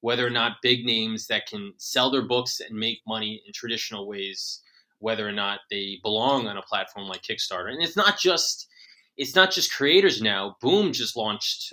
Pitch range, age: 110-140 Hz, 20-39